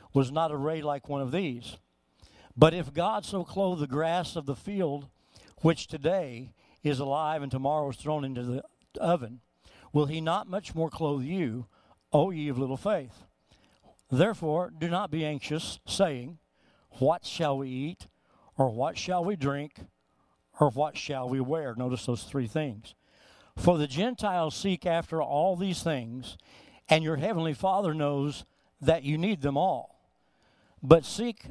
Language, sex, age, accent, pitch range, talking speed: English, male, 60-79, American, 125-165 Hz, 160 wpm